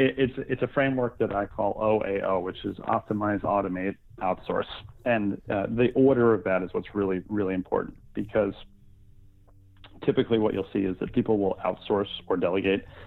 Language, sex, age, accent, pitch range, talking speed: English, male, 40-59, American, 95-115 Hz, 165 wpm